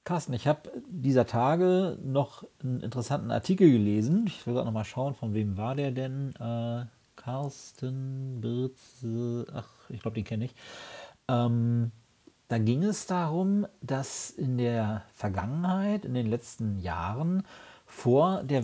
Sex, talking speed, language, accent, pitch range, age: male, 145 wpm, German, German, 110-135 Hz, 40-59